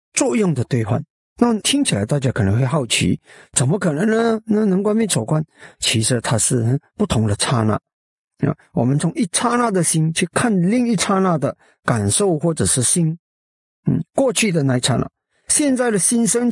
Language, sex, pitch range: Chinese, male, 130-195 Hz